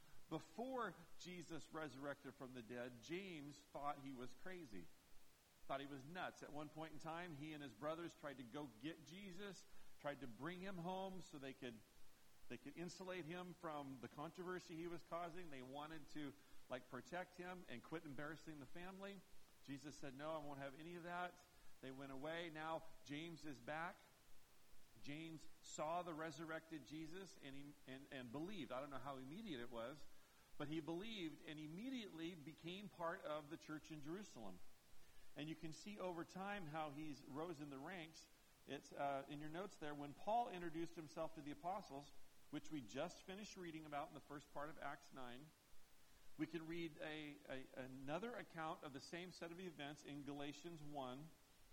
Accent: American